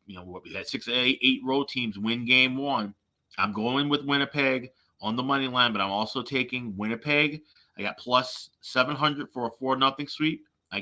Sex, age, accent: male, 30-49, American